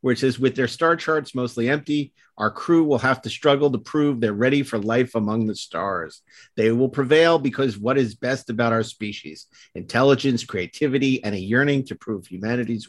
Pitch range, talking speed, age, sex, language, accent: 115-135 Hz, 195 wpm, 50-69, male, English, American